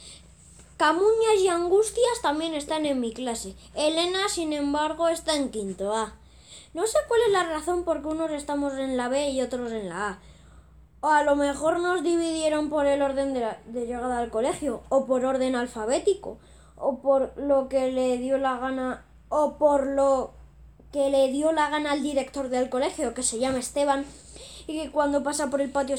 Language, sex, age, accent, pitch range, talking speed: Spanish, female, 20-39, Spanish, 255-310 Hz, 190 wpm